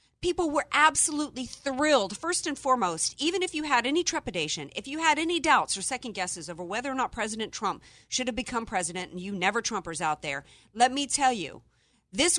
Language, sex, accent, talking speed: English, female, American, 200 wpm